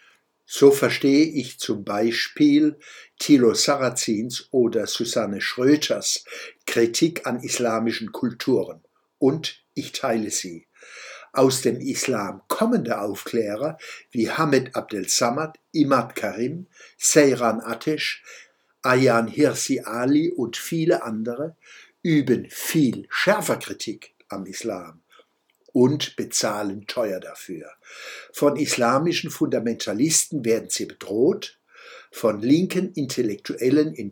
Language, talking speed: German, 100 wpm